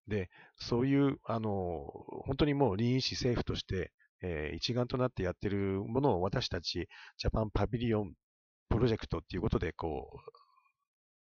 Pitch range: 95-130 Hz